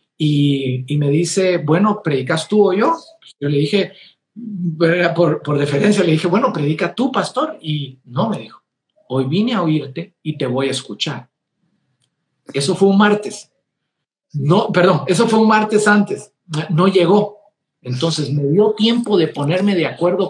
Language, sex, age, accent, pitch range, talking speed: Spanish, male, 50-69, Mexican, 160-215 Hz, 165 wpm